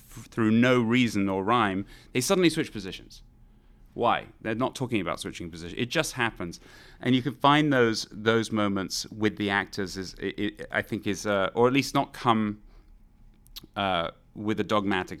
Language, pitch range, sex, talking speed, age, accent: English, 100-120 Hz, male, 180 wpm, 30-49, British